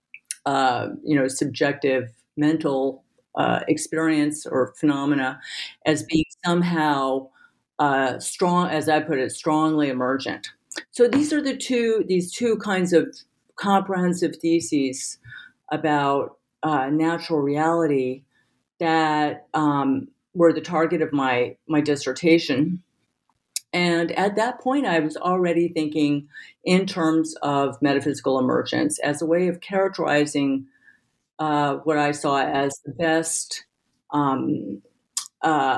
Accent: American